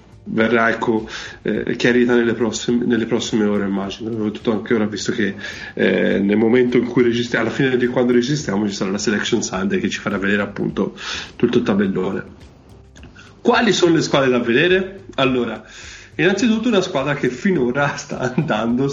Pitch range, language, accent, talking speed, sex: 110-125 Hz, Italian, native, 170 wpm, male